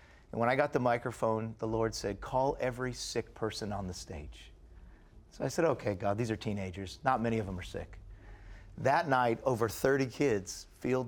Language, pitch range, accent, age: English, 110-165 Hz, American, 40-59